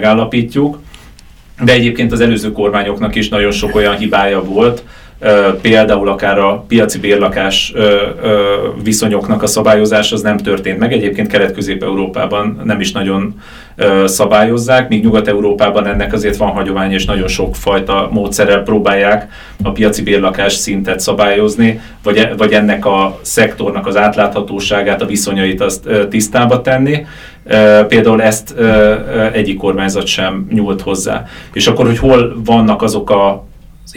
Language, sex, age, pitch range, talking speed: Hungarian, male, 30-49, 100-115 Hz, 130 wpm